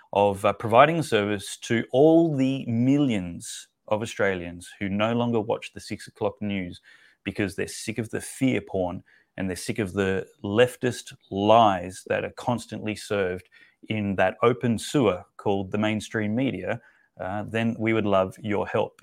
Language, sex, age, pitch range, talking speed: English, male, 30-49, 100-120 Hz, 160 wpm